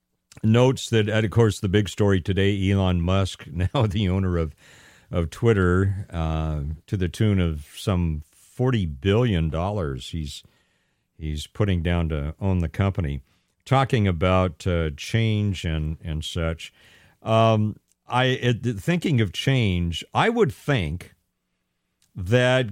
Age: 50-69